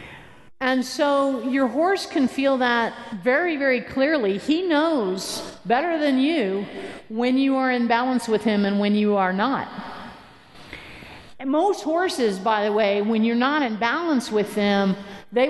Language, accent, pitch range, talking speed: English, American, 215-275 Hz, 155 wpm